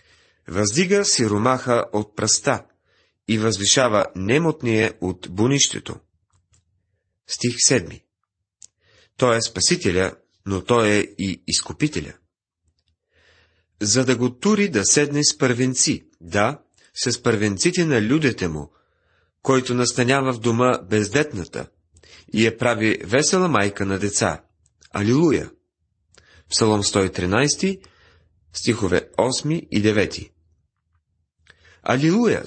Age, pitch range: 30-49, 95-135 Hz